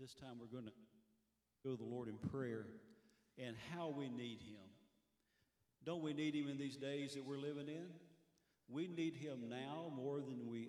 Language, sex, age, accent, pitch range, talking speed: English, male, 40-59, American, 110-135 Hz, 190 wpm